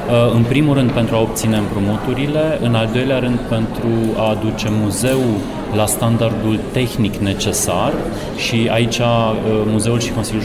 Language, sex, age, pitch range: Romanian, male, 30-49, 105-120 Hz